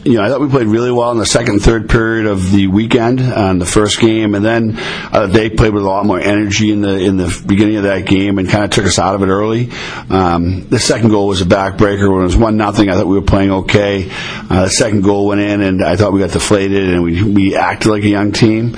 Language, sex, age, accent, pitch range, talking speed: English, male, 50-69, American, 90-105 Hz, 280 wpm